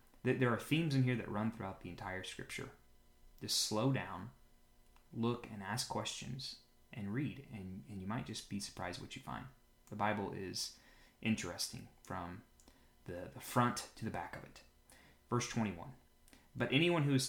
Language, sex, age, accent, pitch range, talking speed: English, male, 20-39, American, 90-115 Hz, 170 wpm